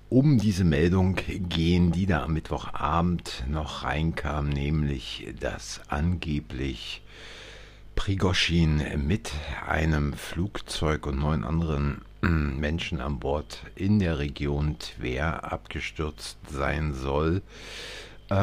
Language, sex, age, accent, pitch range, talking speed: German, male, 50-69, German, 75-90 Hz, 100 wpm